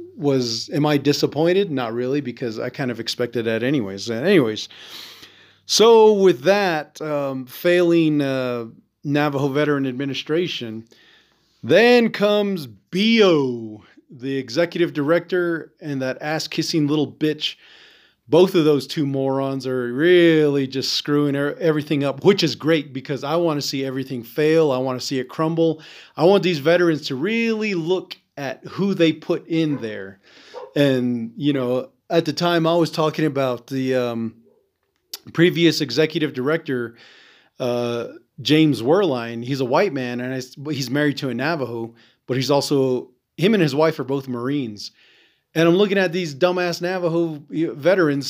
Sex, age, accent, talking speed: male, 40-59, American, 150 wpm